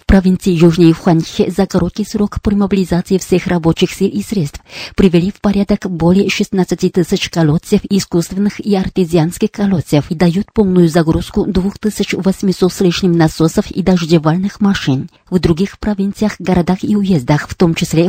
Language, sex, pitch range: Russian, female, 170-200 Hz